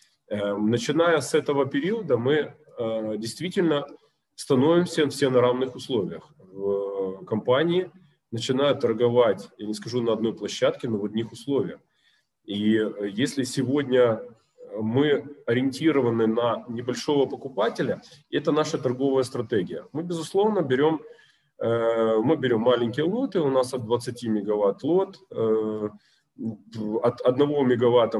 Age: 20-39